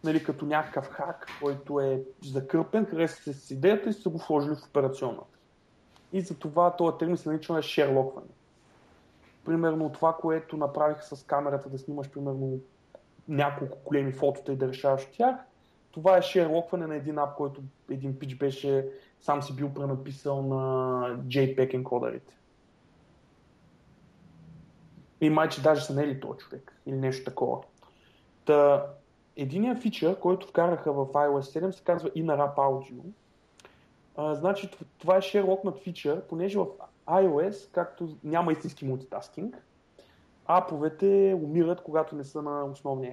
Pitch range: 140-175 Hz